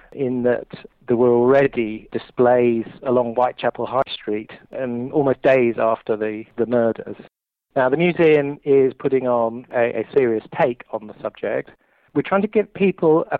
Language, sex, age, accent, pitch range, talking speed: English, male, 40-59, British, 115-140 Hz, 160 wpm